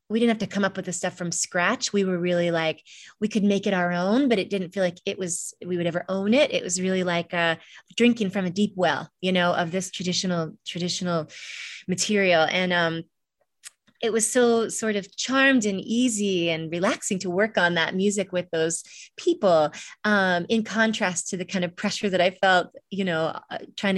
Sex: female